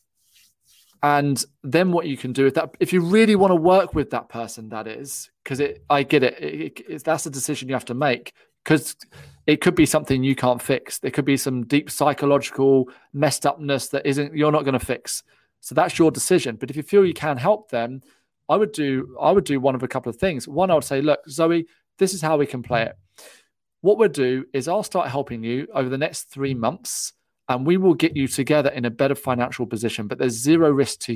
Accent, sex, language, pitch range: British, male, English, 125-155 Hz